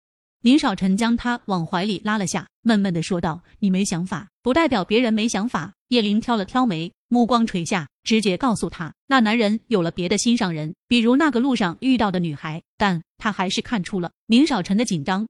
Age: 20-39